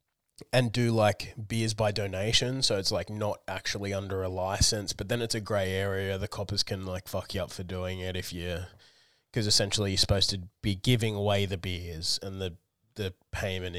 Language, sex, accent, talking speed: English, male, Australian, 200 wpm